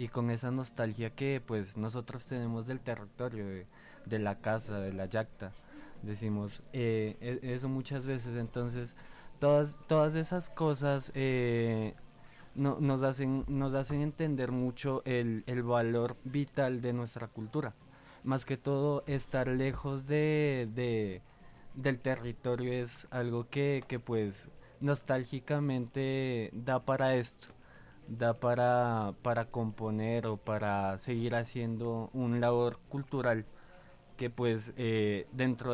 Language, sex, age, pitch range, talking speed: Spanish, male, 20-39, 115-135 Hz, 120 wpm